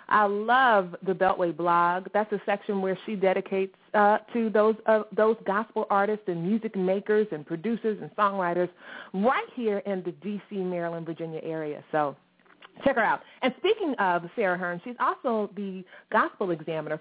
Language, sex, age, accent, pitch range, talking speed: English, female, 30-49, American, 175-230 Hz, 165 wpm